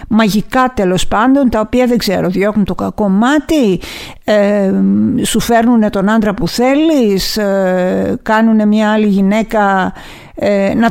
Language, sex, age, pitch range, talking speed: Greek, female, 50-69, 195-255 Hz, 140 wpm